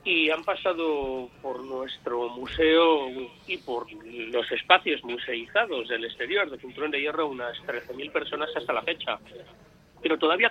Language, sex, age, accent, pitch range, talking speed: Spanish, male, 40-59, Spanish, 135-185 Hz, 145 wpm